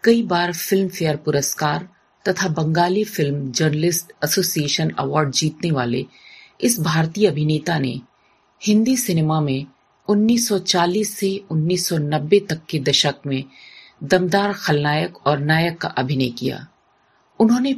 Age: 40-59